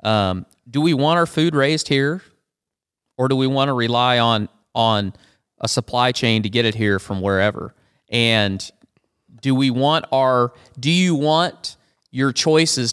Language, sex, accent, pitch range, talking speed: English, male, American, 110-140 Hz, 165 wpm